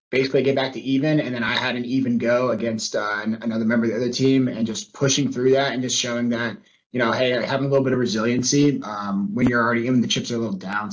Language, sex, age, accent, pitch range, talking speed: English, male, 20-39, American, 115-140 Hz, 270 wpm